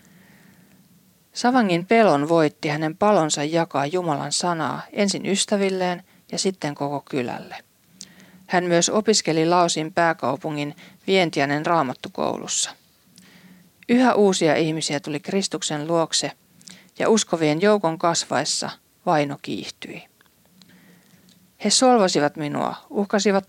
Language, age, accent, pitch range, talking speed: Finnish, 40-59, native, 160-195 Hz, 95 wpm